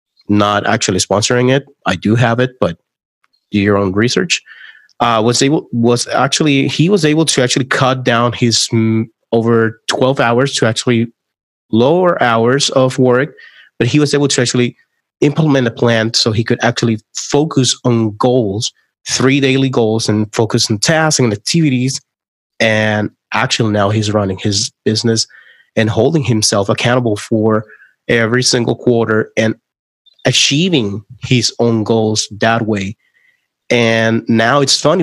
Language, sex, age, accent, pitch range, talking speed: English, male, 30-49, American, 110-130 Hz, 150 wpm